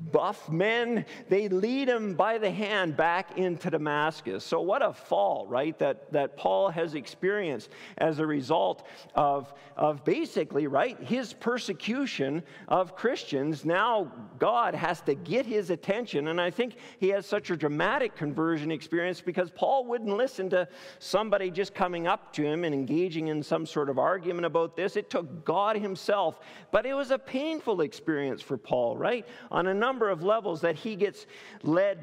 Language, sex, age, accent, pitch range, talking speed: English, male, 50-69, American, 150-210 Hz, 170 wpm